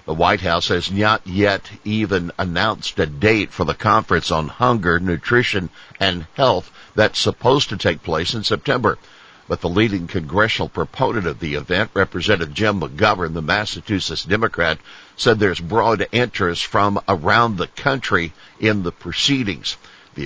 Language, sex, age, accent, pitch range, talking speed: English, male, 60-79, American, 90-110 Hz, 150 wpm